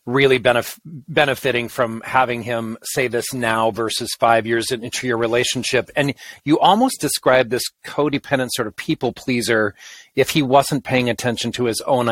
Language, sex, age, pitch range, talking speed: English, male, 40-59, 115-145 Hz, 160 wpm